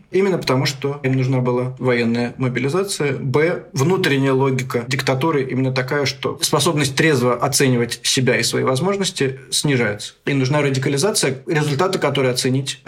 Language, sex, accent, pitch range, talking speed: Russian, male, native, 125-140 Hz, 135 wpm